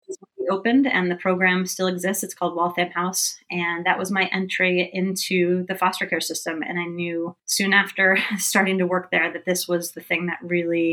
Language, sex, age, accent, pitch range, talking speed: English, female, 30-49, American, 170-185 Hz, 205 wpm